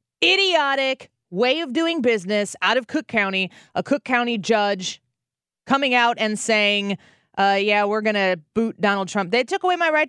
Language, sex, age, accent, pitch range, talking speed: English, female, 30-49, American, 185-250 Hz, 170 wpm